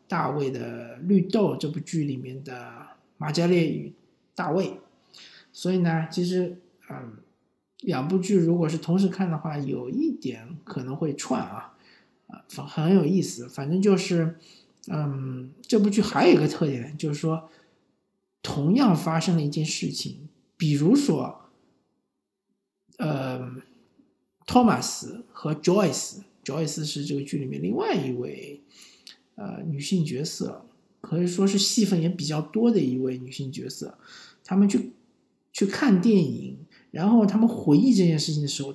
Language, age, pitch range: Chinese, 50-69, 145-195 Hz